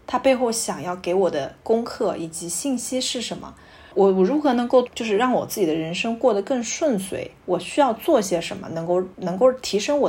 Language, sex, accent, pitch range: Chinese, female, native, 180-250 Hz